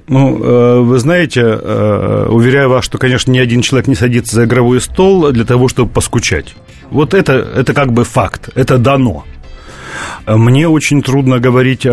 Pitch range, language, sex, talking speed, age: 115-145 Hz, Russian, male, 155 wpm, 40-59